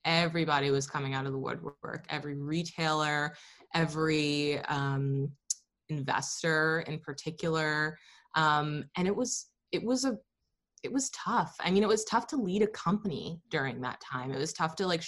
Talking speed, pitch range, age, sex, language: 165 wpm, 145-175 Hz, 20-39, female, English